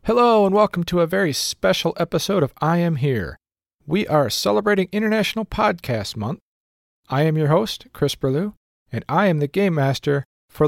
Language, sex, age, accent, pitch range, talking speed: English, male, 40-59, American, 120-175 Hz, 175 wpm